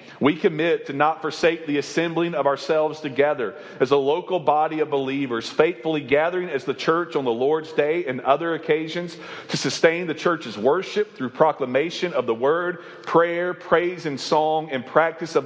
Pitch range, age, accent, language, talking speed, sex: 135-165 Hz, 40-59, American, English, 175 wpm, male